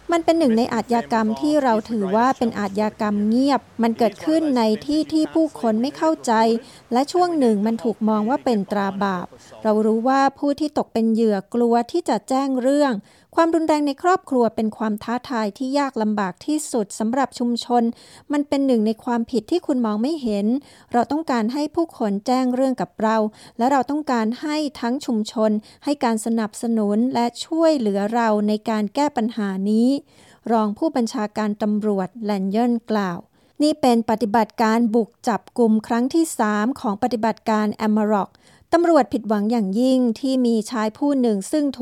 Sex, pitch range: female, 220-270 Hz